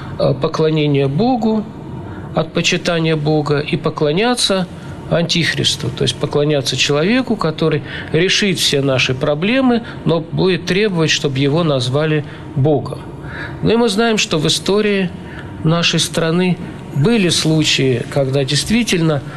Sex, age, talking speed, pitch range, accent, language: male, 50-69, 115 wpm, 145-175 Hz, native, Russian